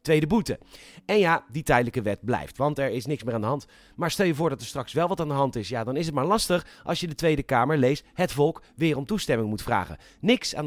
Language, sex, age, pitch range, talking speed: Dutch, male, 30-49, 130-180 Hz, 280 wpm